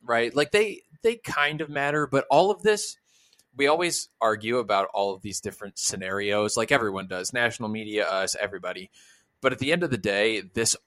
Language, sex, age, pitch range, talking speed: English, male, 20-39, 100-125 Hz, 195 wpm